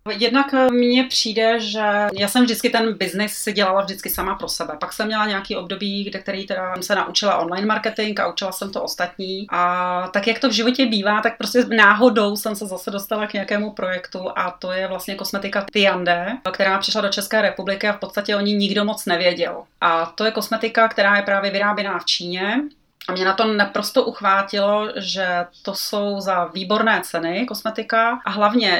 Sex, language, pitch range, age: female, Czech, 190-220 Hz, 30-49